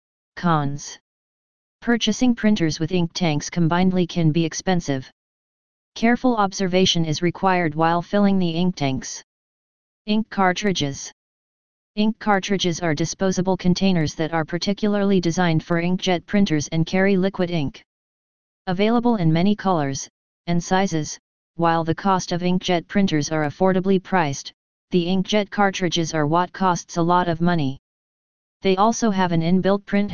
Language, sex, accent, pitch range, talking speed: English, female, American, 165-190 Hz, 135 wpm